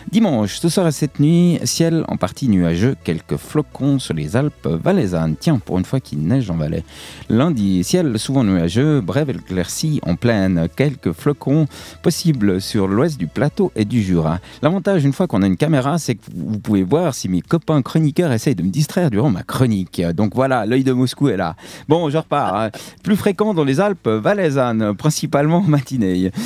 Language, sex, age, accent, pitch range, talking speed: French, male, 40-59, French, 95-155 Hz, 185 wpm